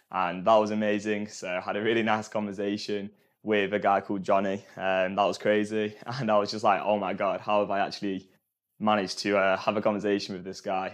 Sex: male